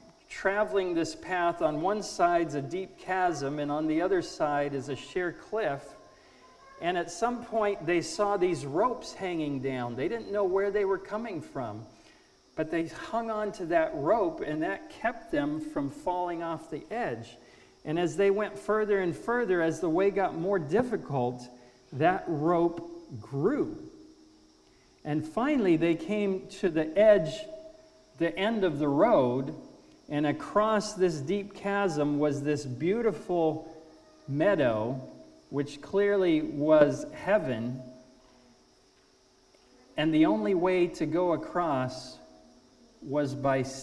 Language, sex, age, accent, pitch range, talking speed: English, male, 50-69, American, 150-210 Hz, 140 wpm